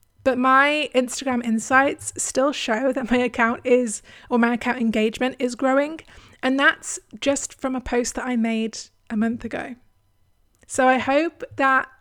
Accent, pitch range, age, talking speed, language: British, 220-265 Hz, 20-39, 160 wpm, English